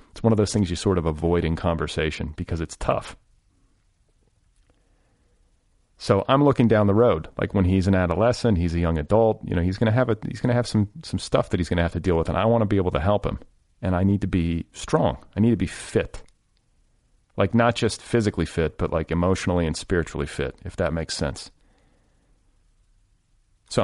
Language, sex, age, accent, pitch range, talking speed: English, male, 40-59, American, 85-110 Hz, 220 wpm